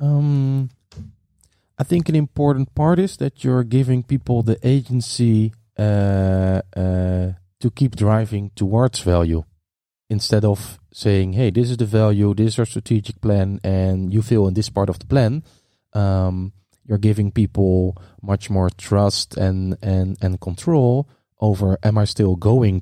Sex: male